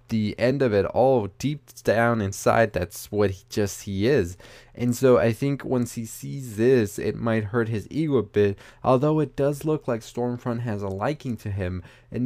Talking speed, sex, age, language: 195 wpm, male, 20-39, English